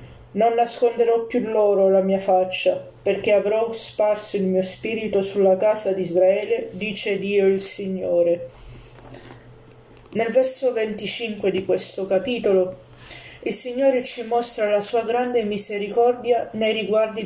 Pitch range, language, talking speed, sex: 195-230 Hz, Italian, 130 wpm, female